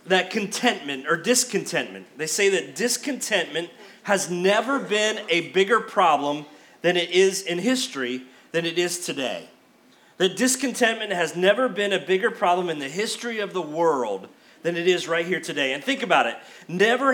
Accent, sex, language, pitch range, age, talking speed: American, male, English, 180-245 Hz, 30-49, 170 wpm